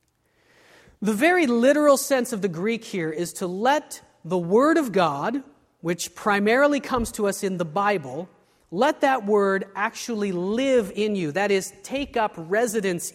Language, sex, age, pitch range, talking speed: English, male, 30-49, 175-245 Hz, 160 wpm